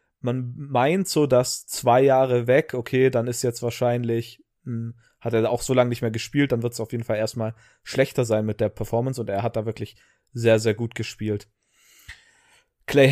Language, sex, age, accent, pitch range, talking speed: German, male, 30-49, German, 110-130 Hz, 195 wpm